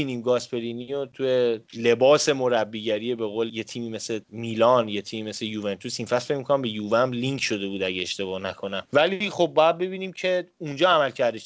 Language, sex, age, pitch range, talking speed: Persian, male, 30-49, 130-190 Hz, 175 wpm